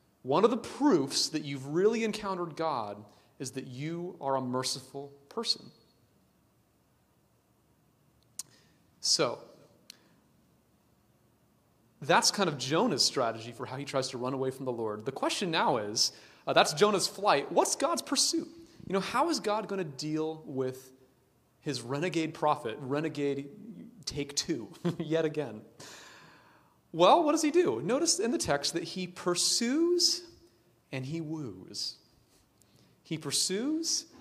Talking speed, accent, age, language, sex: 135 wpm, American, 30-49, English, male